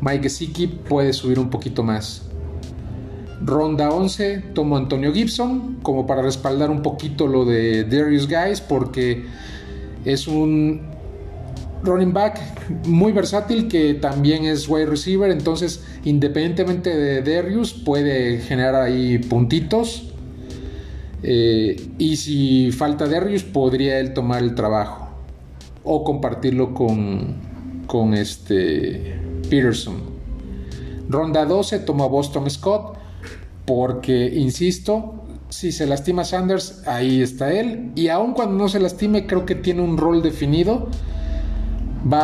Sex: male